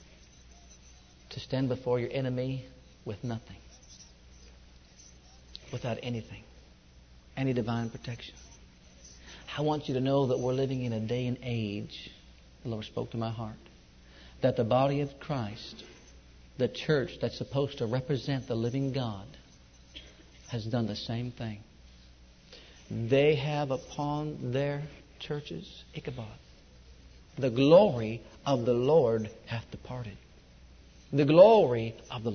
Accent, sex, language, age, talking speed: American, male, English, 50-69, 125 wpm